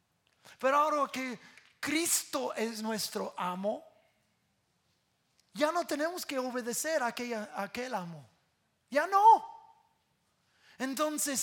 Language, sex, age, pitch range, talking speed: English, male, 30-49, 160-250 Hz, 100 wpm